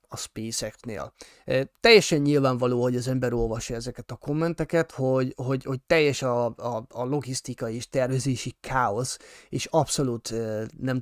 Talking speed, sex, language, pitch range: 145 wpm, male, Hungarian, 125-155 Hz